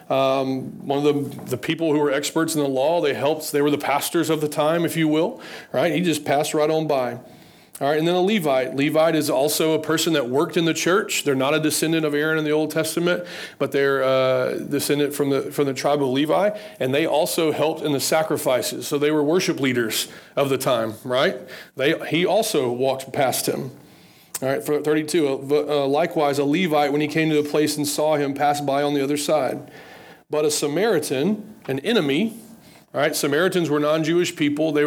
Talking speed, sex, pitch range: 215 wpm, male, 145-160 Hz